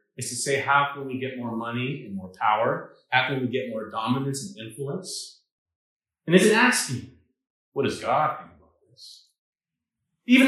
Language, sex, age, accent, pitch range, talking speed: English, male, 40-59, American, 115-175 Hz, 185 wpm